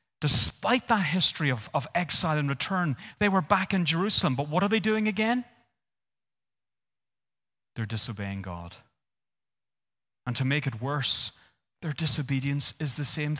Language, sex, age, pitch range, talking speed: English, male, 30-49, 110-140 Hz, 145 wpm